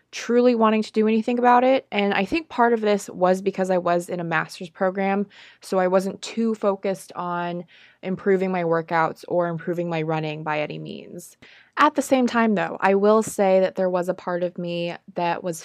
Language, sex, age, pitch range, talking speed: English, female, 20-39, 170-210 Hz, 205 wpm